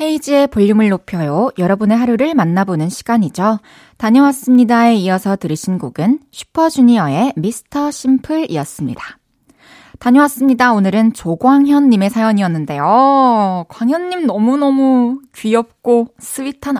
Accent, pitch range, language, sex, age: native, 200-265 Hz, Korean, female, 20-39